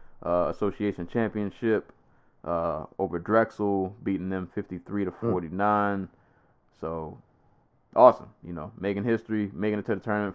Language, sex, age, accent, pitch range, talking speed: English, male, 20-39, American, 95-115 Hz, 130 wpm